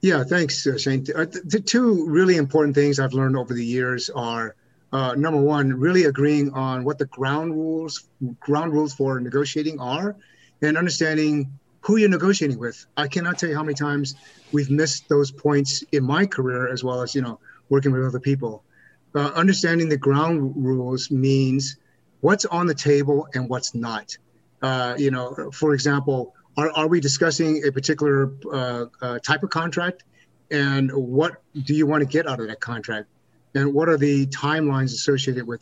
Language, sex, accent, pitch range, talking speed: English, male, American, 135-155 Hz, 185 wpm